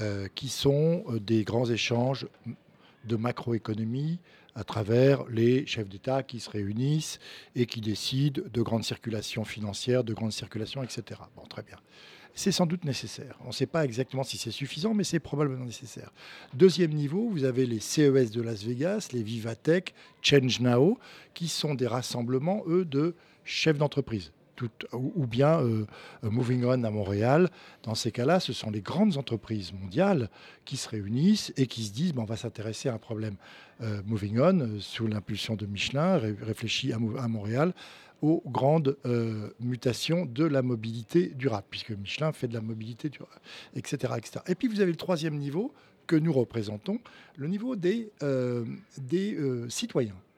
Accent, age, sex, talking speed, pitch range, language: French, 50-69, male, 170 wpm, 115-155 Hz, French